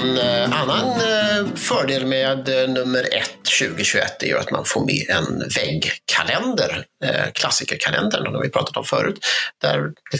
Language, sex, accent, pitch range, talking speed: Swedish, male, native, 130-165 Hz, 120 wpm